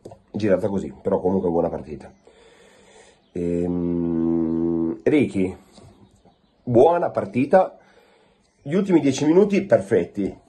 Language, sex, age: Italian, male, 30-49